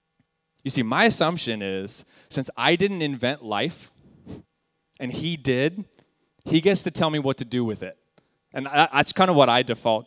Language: English